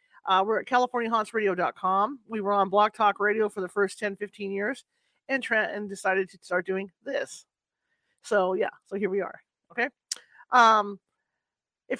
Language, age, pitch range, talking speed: English, 40-59, 190-250 Hz, 155 wpm